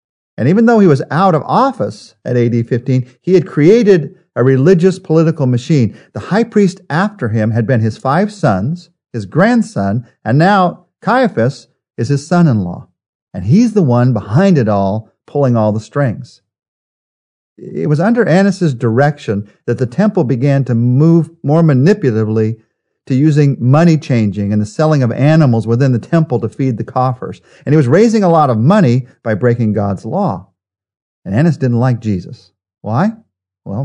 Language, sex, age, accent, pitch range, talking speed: English, male, 50-69, American, 115-165 Hz, 170 wpm